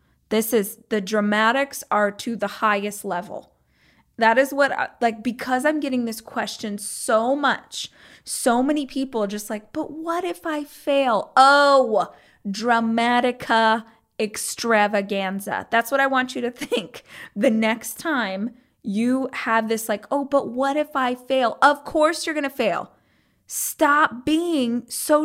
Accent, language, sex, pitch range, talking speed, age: American, English, female, 215-280 Hz, 150 wpm, 20-39